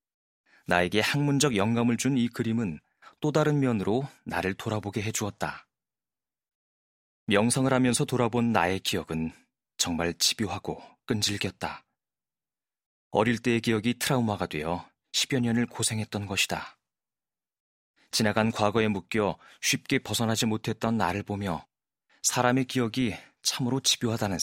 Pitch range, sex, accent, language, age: 95-125 Hz, male, native, Korean, 30-49